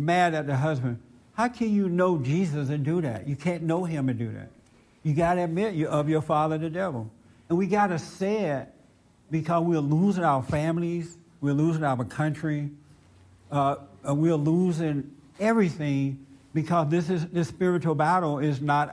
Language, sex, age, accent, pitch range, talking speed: English, male, 60-79, American, 135-175 Hz, 175 wpm